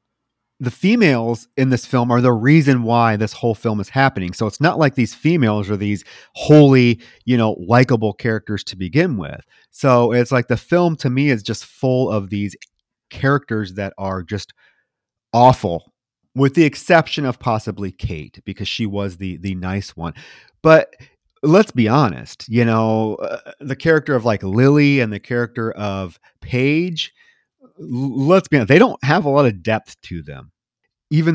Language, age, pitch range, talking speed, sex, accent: English, 30-49, 105-140 Hz, 170 wpm, male, American